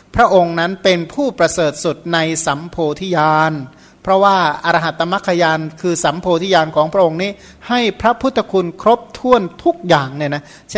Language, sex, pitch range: Thai, male, 160-190 Hz